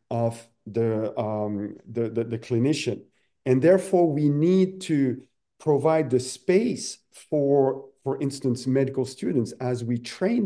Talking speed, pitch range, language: 130 wpm, 125-150 Hz, English